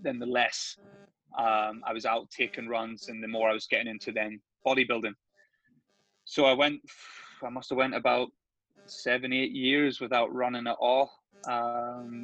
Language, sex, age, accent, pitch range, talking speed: English, male, 20-39, British, 115-145 Hz, 160 wpm